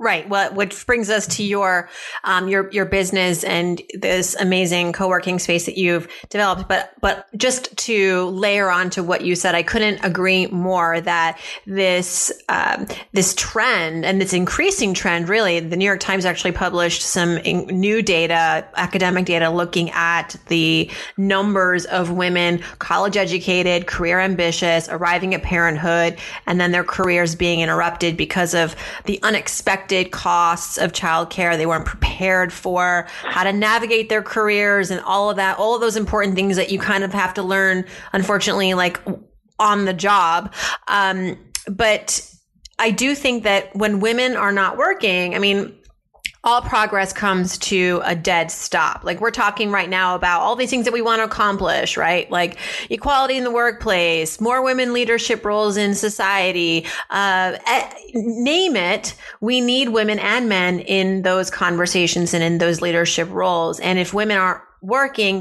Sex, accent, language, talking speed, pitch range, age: female, American, English, 165 wpm, 175-210 Hz, 30-49